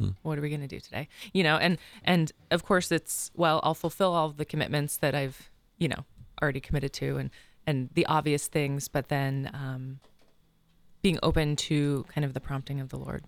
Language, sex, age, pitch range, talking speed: English, female, 20-39, 135-160 Hz, 205 wpm